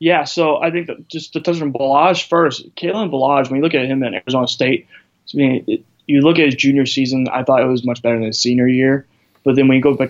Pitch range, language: 120-145 Hz, English